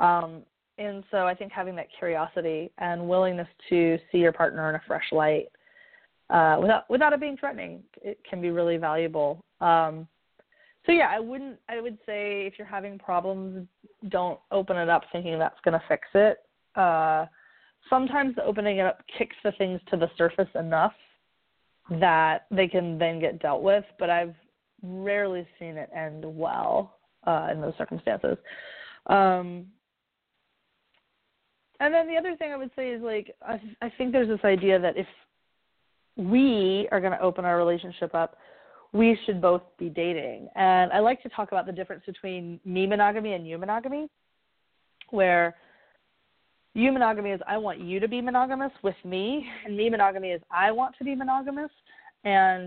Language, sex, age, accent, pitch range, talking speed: English, female, 20-39, American, 175-220 Hz, 170 wpm